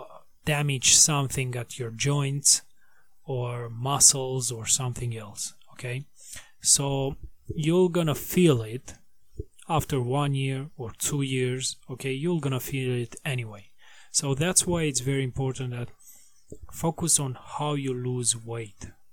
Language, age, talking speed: English, 30-49, 130 wpm